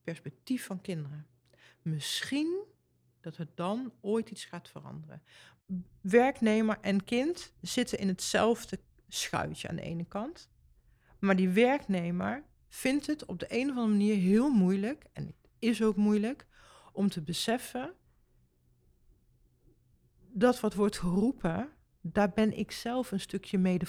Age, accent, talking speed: 40-59, Dutch, 135 wpm